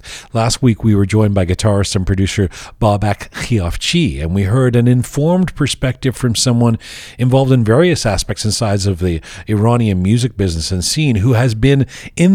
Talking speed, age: 175 wpm, 40-59